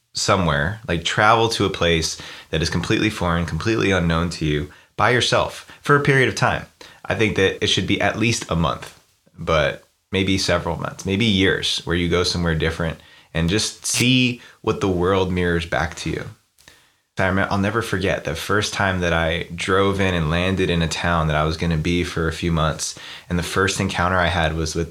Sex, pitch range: male, 85-100 Hz